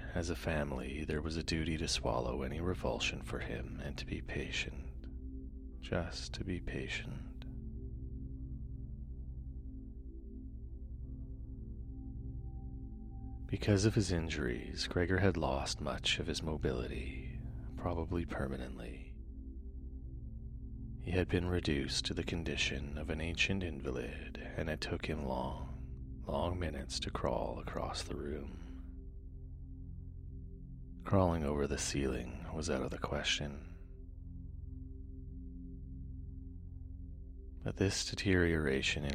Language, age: English, 30-49